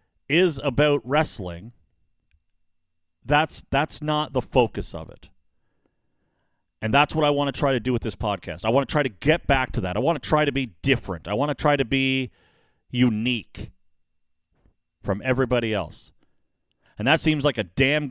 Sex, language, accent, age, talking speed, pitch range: male, English, American, 40-59, 180 wpm, 110-145 Hz